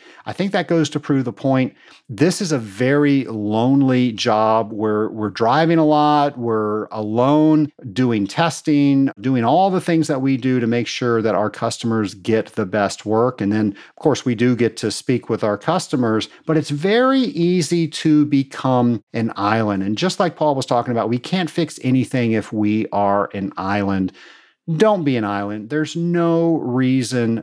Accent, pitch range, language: American, 110-155 Hz, English